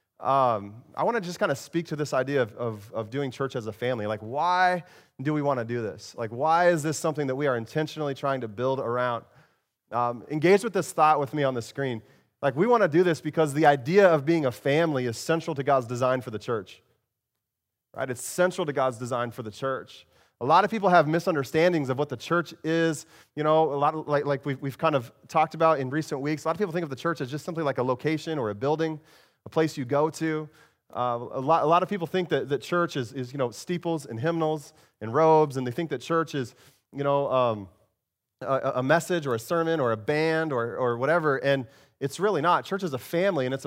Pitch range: 130-165 Hz